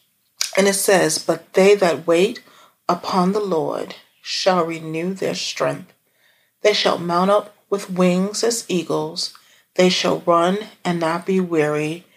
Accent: American